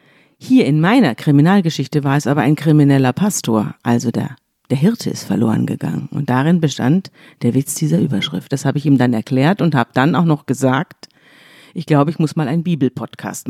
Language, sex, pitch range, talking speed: German, female, 135-170 Hz, 190 wpm